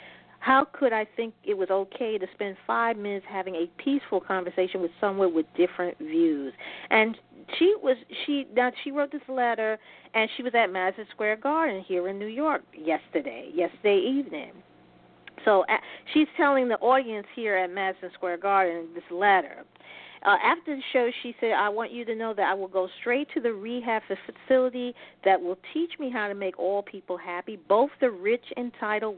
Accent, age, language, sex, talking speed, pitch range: American, 40-59, English, female, 185 wpm, 185-235 Hz